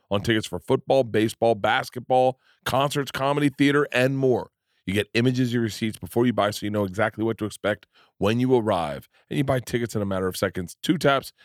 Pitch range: 100-125 Hz